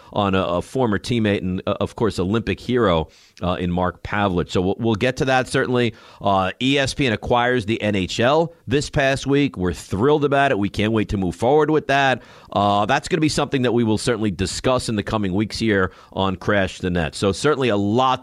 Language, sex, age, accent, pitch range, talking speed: English, male, 50-69, American, 100-140 Hz, 215 wpm